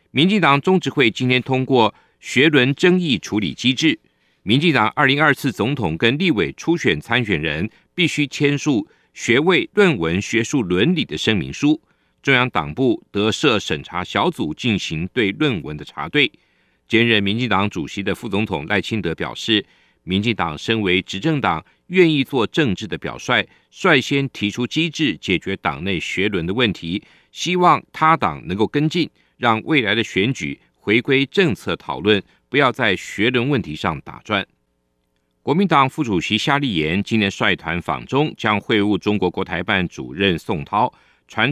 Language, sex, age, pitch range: Chinese, male, 50-69, 100-145 Hz